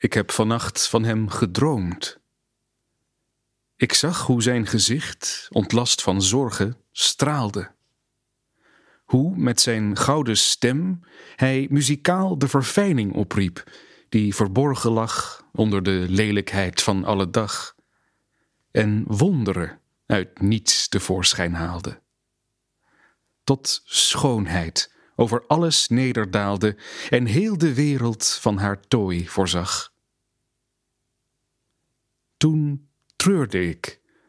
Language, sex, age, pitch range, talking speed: Dutch, male, 40-59, 100-130 Hz, 100 wpm